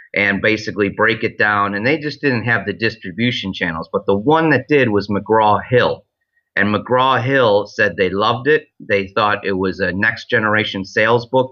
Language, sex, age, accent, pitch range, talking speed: English, male, 30-49, American, 95-115 Hz, 175 wpm